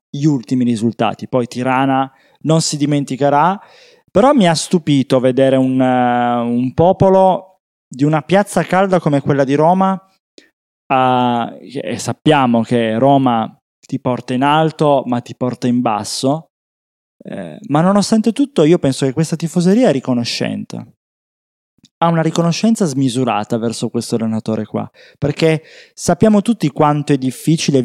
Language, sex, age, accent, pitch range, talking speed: Italian, male, 20-39, native, 125-165 Hz, 130 wpm